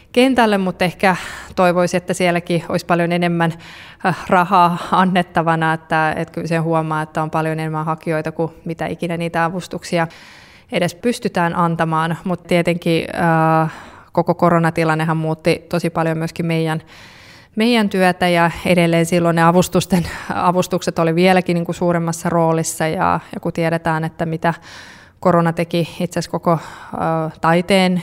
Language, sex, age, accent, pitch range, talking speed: Finnish, female, 20-39, native, 160-175 Hz, 135 wpm